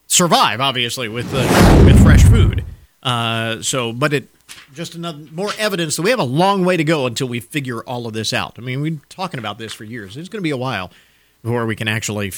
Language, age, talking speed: English, 40-59, 240 wpm